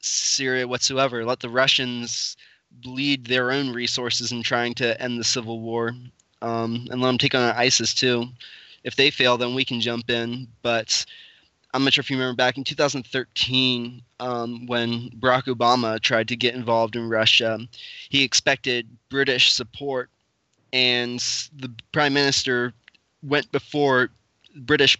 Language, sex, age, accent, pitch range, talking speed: English, male, 20-39, American, 115-130 Hz, 150 wpm